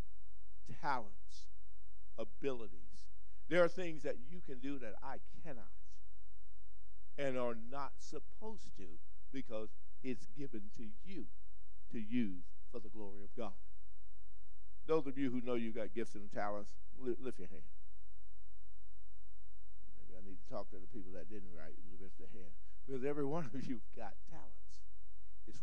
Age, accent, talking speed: 50-69, American, 150 wpm